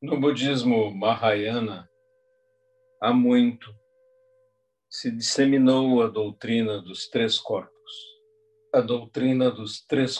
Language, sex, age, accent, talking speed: Portuguese, male, 50-69, Brazilian, 95 wpm